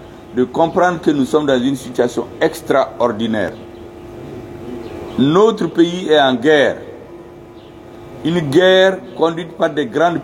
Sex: male